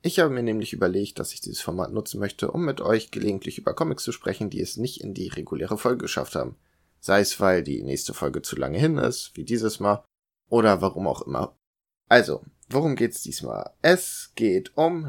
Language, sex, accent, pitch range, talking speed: German, male, German, 75-120 Hz, 205 wpm